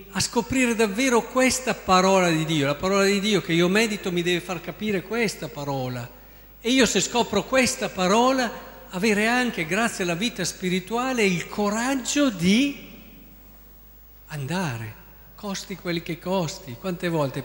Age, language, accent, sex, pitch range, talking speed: 50-69, Italian, native, male, 150-225 Hz, 145 wpm